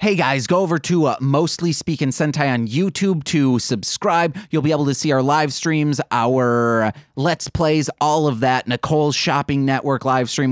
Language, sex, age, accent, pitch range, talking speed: English, male, 30-49, American, 120-155 Hz, 185 wpm